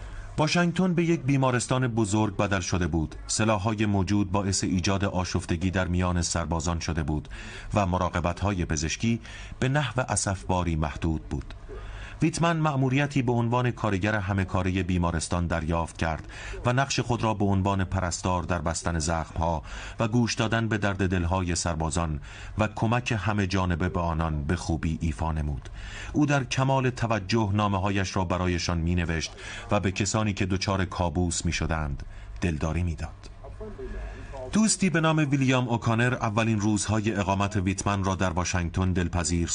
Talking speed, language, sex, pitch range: 145 wpm, Persian, male, 90-115 Hz